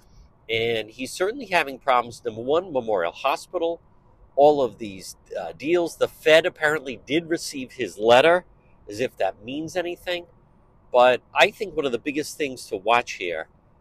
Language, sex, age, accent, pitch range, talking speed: English, male, 50-69, American, 115-170 Hz, 160 wpm